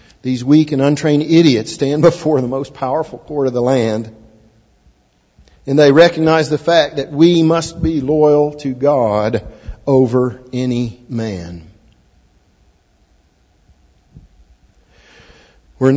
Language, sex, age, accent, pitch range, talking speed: English, male, 50-69, American, 135-175 Hz, 115 wpm